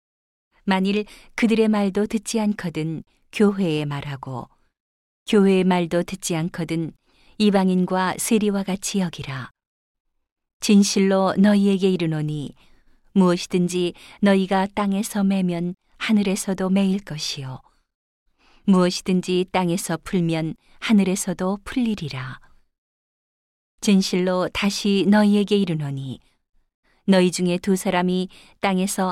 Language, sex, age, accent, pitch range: Korean, female, 40-59, native, 165-200 Hz